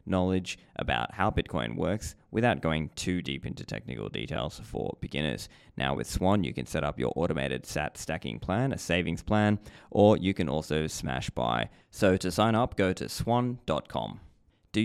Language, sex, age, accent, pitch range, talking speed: English, male, 20-39, Australian, 80-105 Hz, 175 wpm